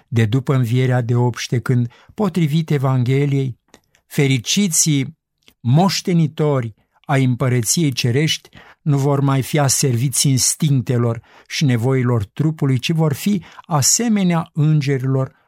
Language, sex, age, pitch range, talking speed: Romanian, male, 50-69, 125-155 Hz, 105 wpm